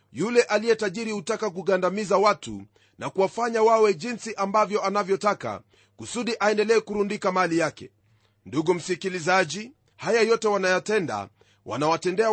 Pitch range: 180-225 Hz